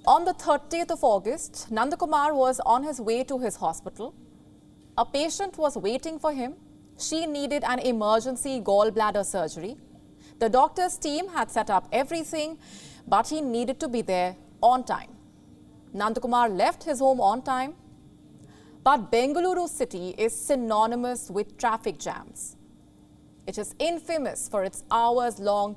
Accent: Indian